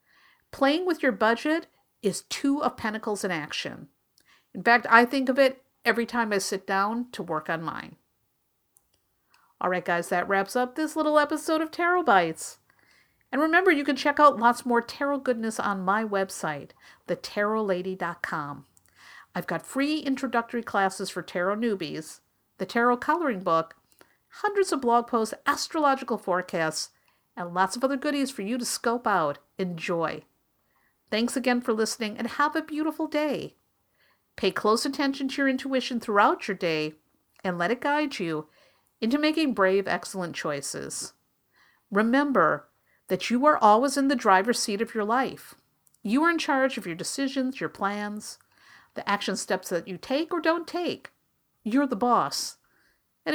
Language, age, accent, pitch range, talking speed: English, 50-69, American, 195-280 Hz, 160 wpm